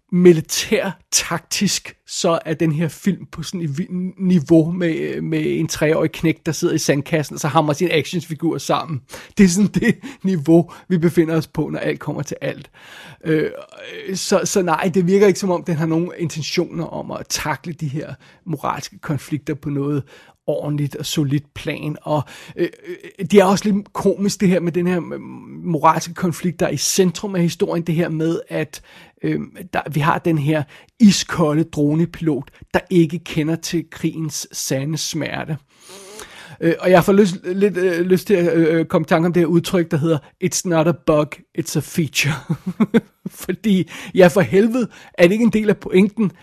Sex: male